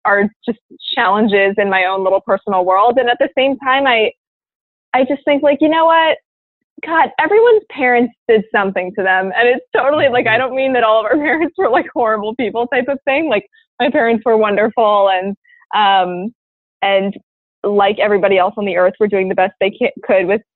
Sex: female